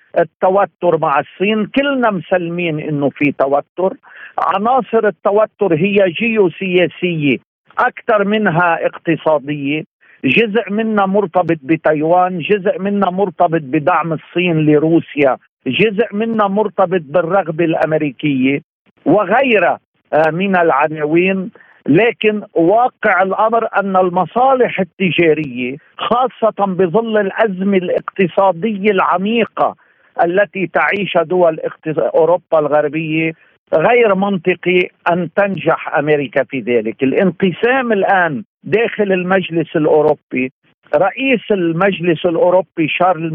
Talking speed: 90 wpm